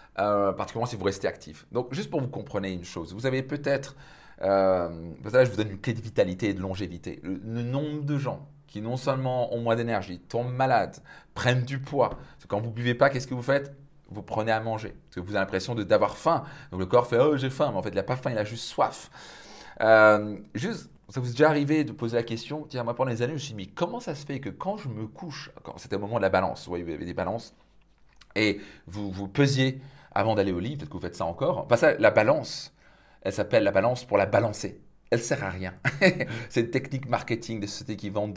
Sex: male